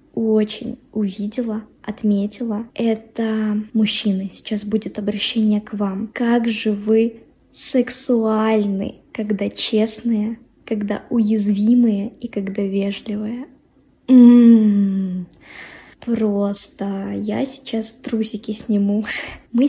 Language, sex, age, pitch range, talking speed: Russian, female, 20-39, 210-255 Hz, 80 wpm